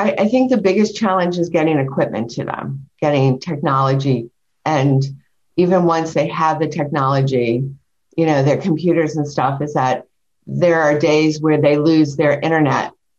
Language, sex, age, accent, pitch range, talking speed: English, female, 50-69, American, 140-165 Hz, 160 wpm